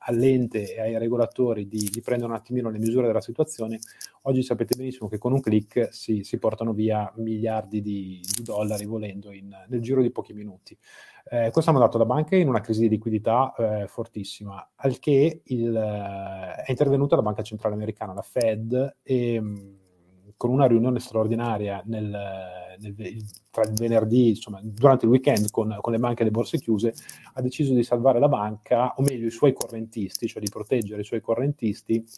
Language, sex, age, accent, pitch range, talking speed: Italian, male, 30-49, native, 105-125 Hz, 185 wpm